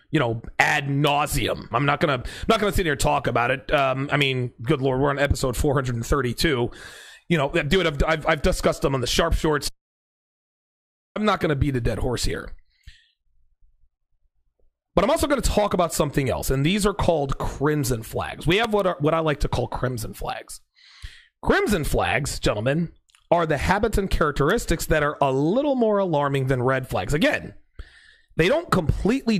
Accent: American